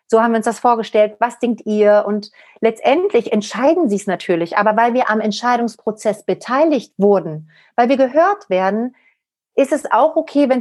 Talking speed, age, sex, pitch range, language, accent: 175 wpm, 40-59, female, 200-240 Hz, German, German